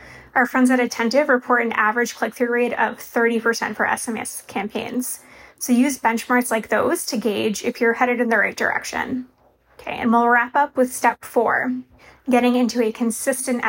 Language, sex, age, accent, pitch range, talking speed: English, female, 20-39, American, 230-255 Hz, 175 wpm